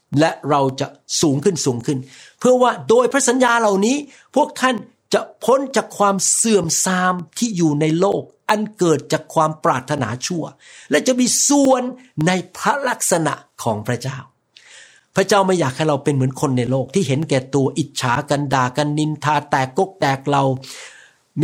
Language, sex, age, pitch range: Thai, male, 60-79, 145-195 Hz